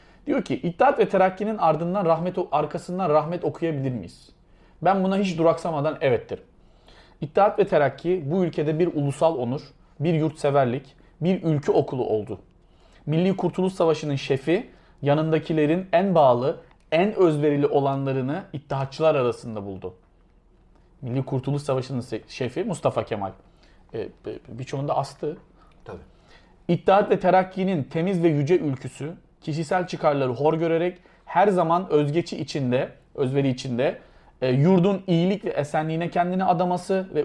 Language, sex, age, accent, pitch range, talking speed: Turkish, male, 40-59, native, 140-185 Hz, 120 wpm